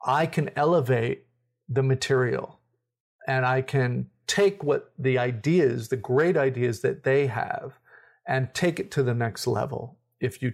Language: English